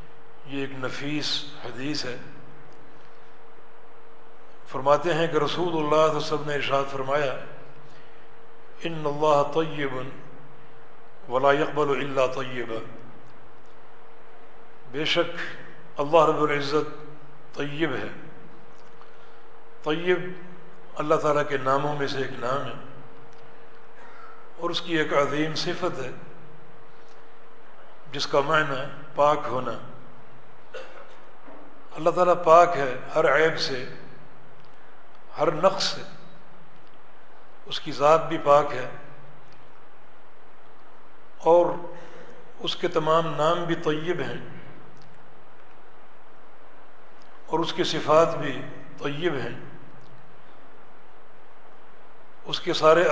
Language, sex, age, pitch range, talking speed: Urdu, male, 60-79, 140-160 Hz, 95 wpm